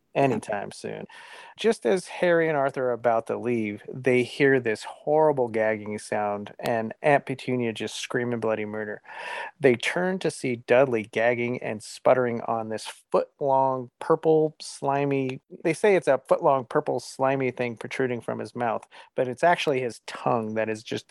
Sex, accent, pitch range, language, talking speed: male, American, 120-150 Hz, English, 160 wpm